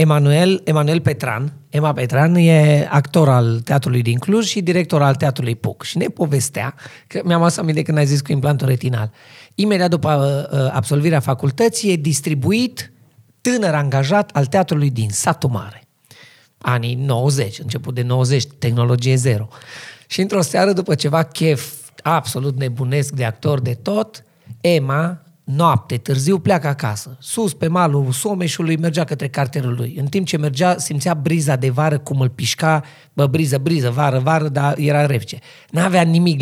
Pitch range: 135-165 Hz